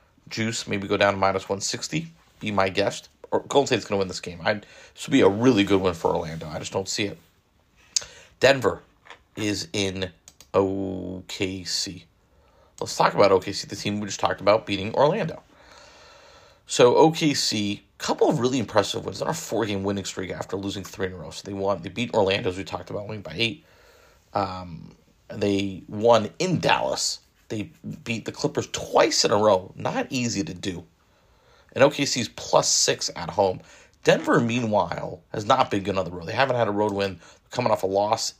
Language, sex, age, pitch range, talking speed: English, male, 30-49, 95-130 Hz, 190 wpm